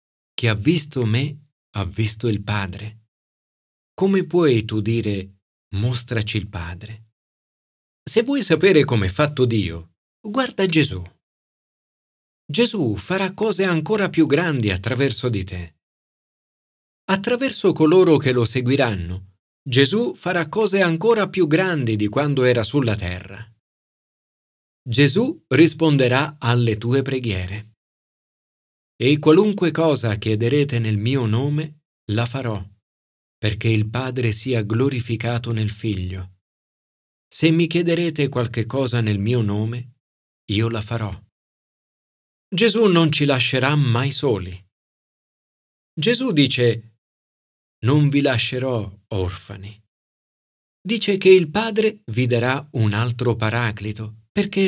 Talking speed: 115 wpm